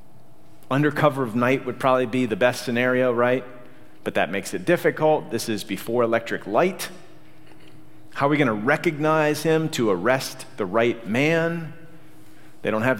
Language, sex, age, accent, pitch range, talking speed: English, male, 40-59, American, 105-145 Hz, 160 wpm